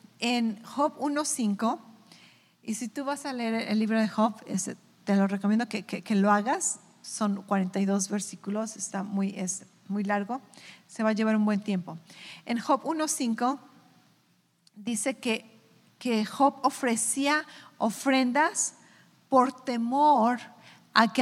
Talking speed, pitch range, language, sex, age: 140 wpm, 215-270 Hz, English, female, 40-59